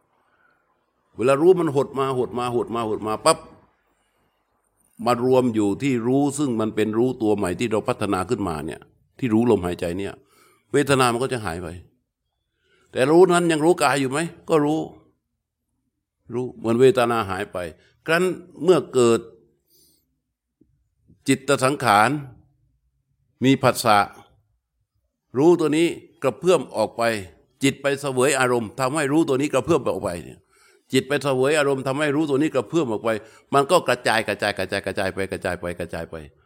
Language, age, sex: Thai, 60-79, male